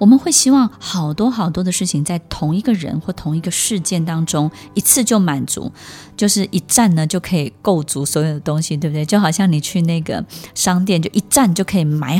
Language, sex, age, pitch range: Chinese, female, 20-39, 155-205 Hz